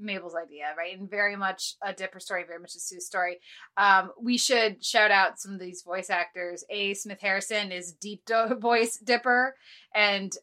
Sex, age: female, 20-39